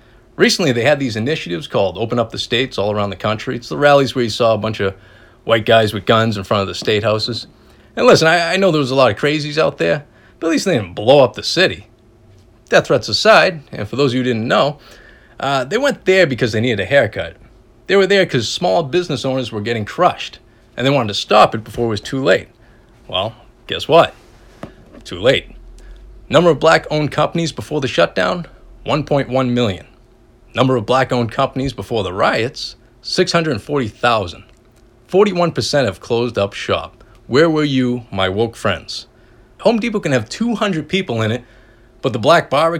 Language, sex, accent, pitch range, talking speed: English, male, American, 115-145 Hz, 200 wpm